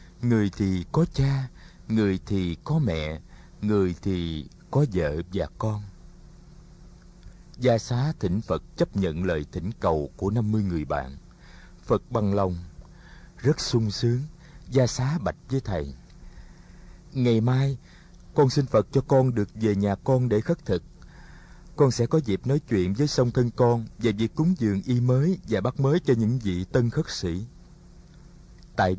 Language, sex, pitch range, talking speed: Vietnamese, male, 95-135 Hz, 160 wpm